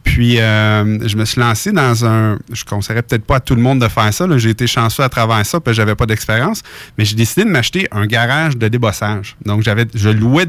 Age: 30-49